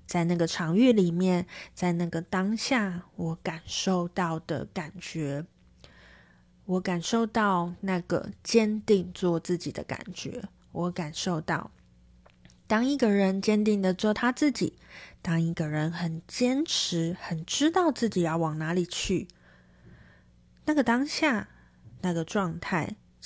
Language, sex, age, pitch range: Chinese, female, 20-39, 165-210 Hz